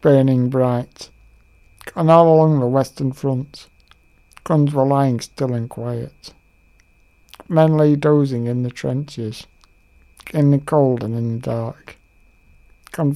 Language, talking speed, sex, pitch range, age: English, 130 wpm, male, 110-140 Hz, 60-79